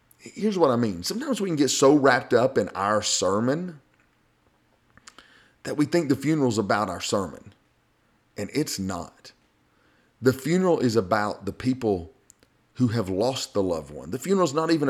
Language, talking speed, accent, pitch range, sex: English, 175 wpm, American, 100-140 Hz, male